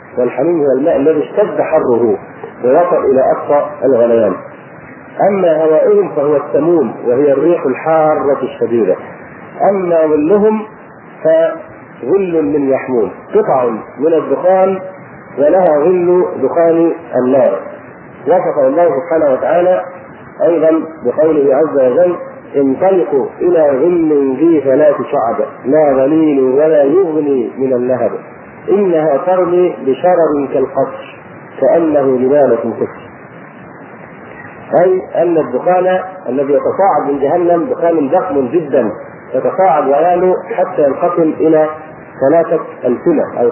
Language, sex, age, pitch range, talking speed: Arabic, male, 40-59, 145-185 Hz, 105 wpm